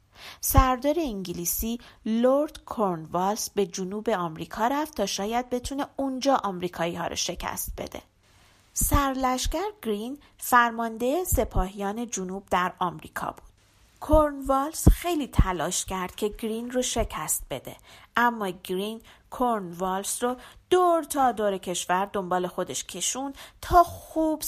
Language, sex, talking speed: Persian, female, 115 wpm